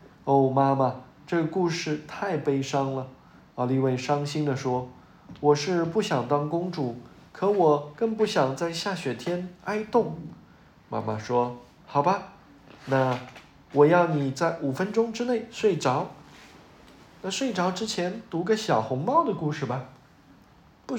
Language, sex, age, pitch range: Chinese, male, 20-39, 140-200 Hz